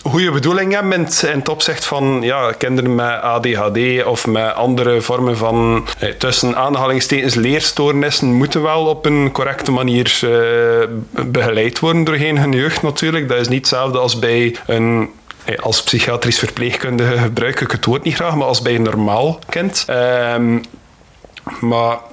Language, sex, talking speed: Dutch, male, 155 wpm